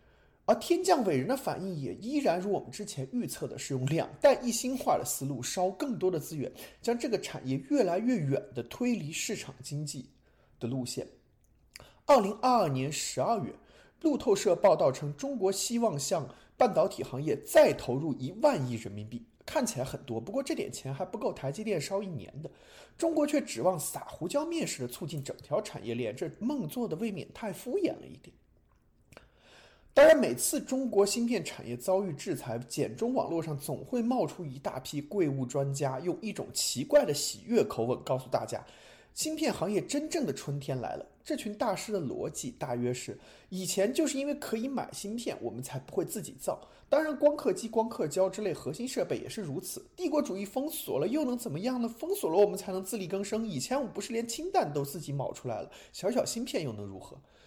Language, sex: Chinese, male